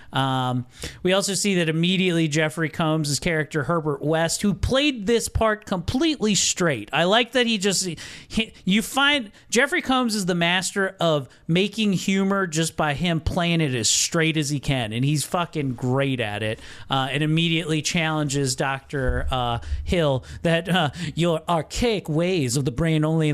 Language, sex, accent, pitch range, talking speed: English, male, American, 140-185 Hz, 170 wpm